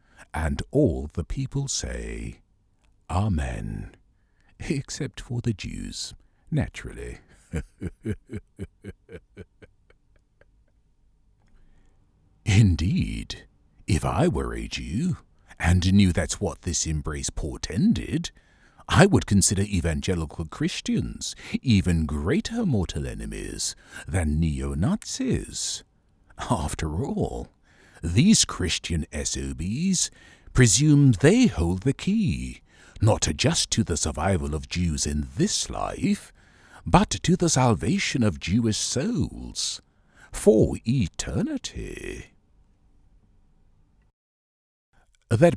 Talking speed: 85 wpm